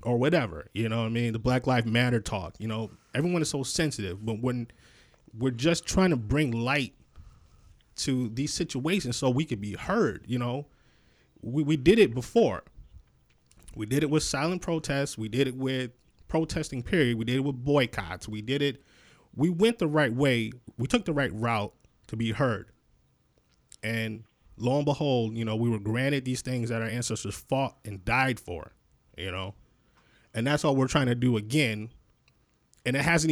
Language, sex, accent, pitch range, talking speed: English, male, American, 110-140 Hz, 190 wpm